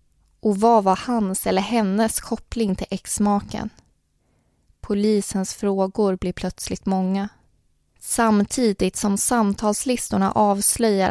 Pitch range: 185-210 Hz